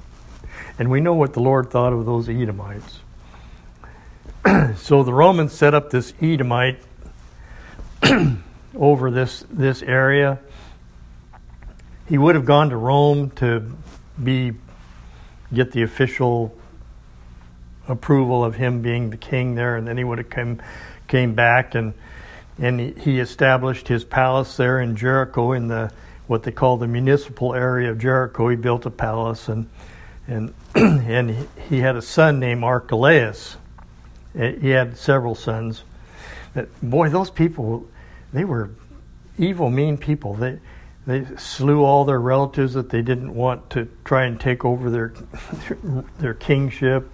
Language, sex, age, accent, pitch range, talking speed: English, male, 60-79, American, 110-135 Hz, 140 wpm